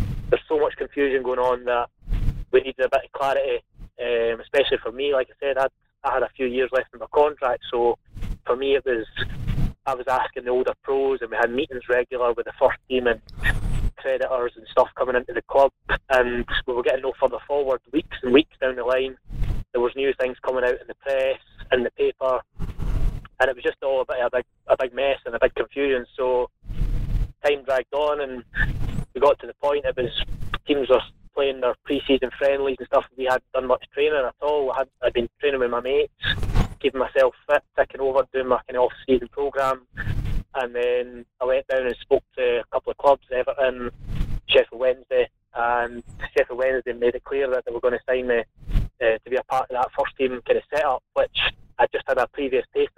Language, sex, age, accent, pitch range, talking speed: English, male, 20-39, British, 120-165 Hz, 215 wpm